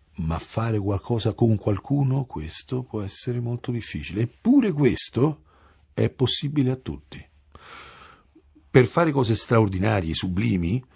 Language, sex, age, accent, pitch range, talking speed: English, male, 50-69, Italian, 85-120 Hz, 115 wpm